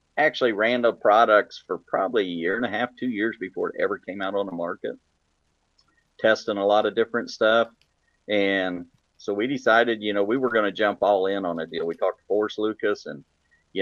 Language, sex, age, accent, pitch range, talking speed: English, male, 40-59, American, 95-140 Hz, 215 wpm